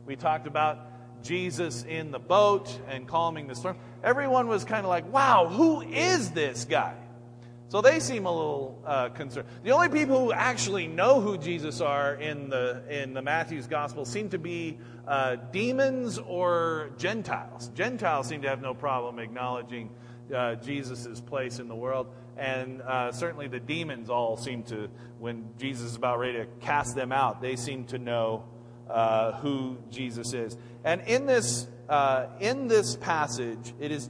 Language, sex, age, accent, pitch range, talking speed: English, male, 40-59, American, 120-165 Hz, 170 wpm